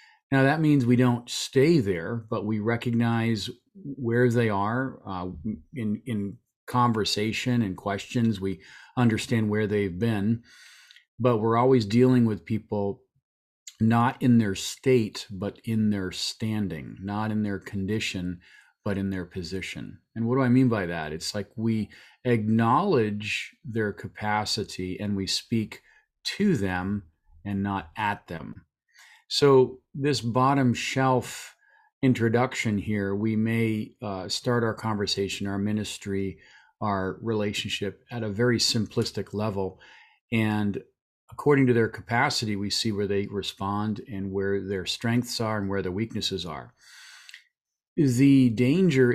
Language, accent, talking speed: English, American, 135 wpm